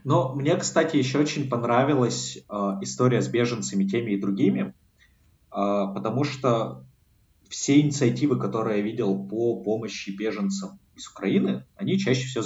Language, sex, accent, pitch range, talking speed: Russian, male, native, 95-125 Hz, 140 wpm